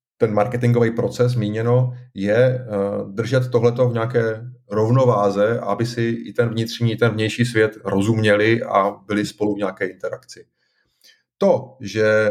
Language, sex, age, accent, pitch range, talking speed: Czech, male, 30-49, native, 105-125 Hz, 135 wpm